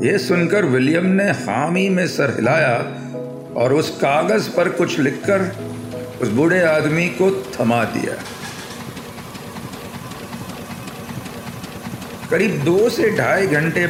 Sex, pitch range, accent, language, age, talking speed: male, 130-185 Hz, native, Hindi, 50-69, 110 wpm